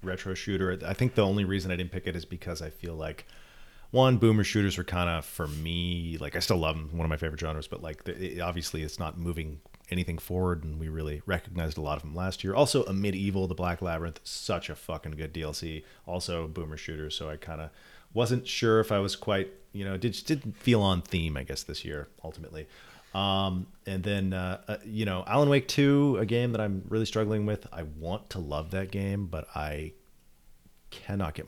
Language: English